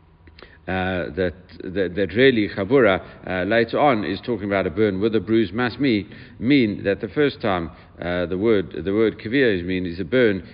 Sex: male